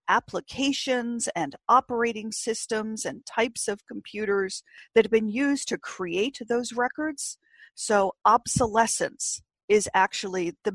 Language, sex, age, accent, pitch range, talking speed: English, female, 40-59, American, 190-235 Hz, 115 wpm